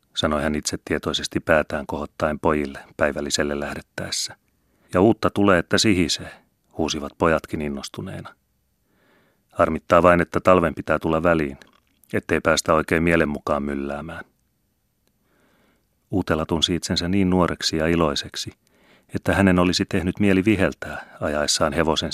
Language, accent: Finnish, native